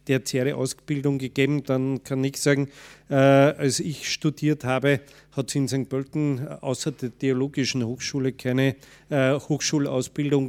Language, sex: German, male